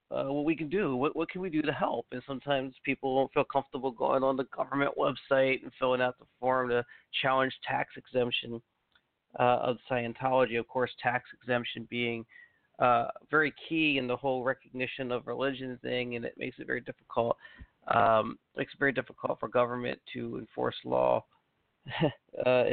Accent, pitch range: American, 125-140 Hz